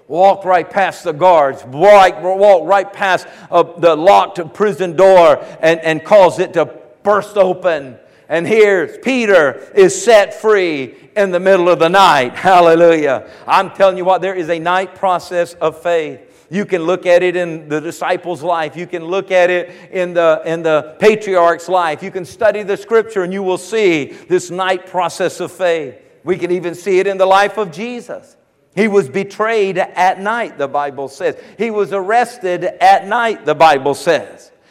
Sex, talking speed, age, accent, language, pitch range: male, 180 wpm, 50-69, American, English, 180-230 Hz